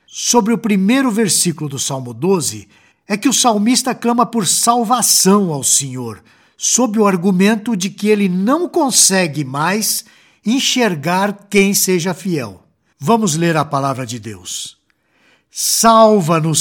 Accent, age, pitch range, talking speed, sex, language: Brazilian, 60-79, 155-220 Hz, 130 wpm, male, Portuguese